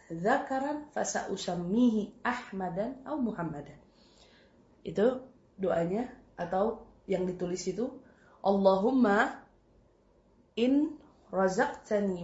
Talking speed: 75 wpm